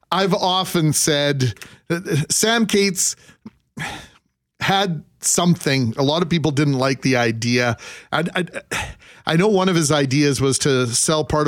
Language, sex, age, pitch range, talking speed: English, male, 40-59, 125-155 Hz, 145 wpm